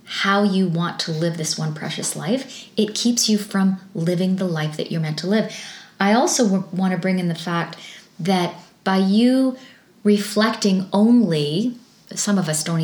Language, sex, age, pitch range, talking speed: English, female, 30-49, 170-210 Hz, 175 wpm